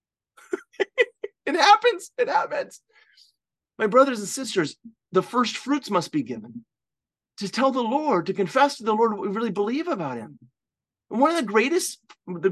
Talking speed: 165 wpm